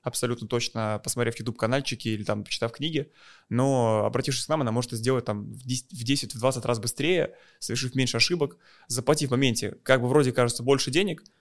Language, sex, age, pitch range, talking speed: Russian, male, 20-39, 110-130 Hz, 175 wpm